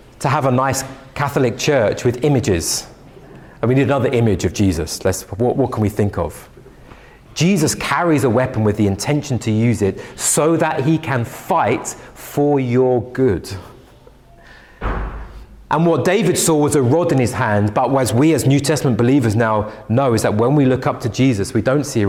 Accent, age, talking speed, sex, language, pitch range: British, 30-49, 190 wpm, male, English, 120-155 Hz